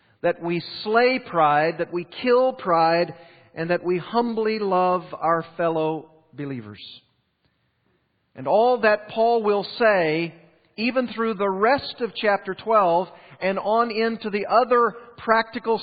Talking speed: 135 wpm